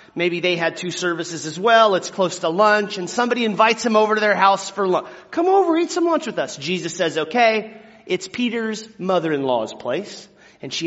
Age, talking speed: 30-49, 205 wpm